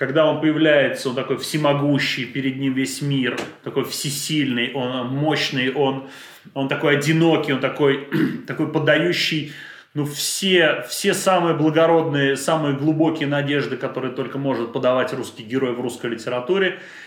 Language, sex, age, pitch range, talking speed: Russian, male, 30-49, 135-155 Hz, 135 wpm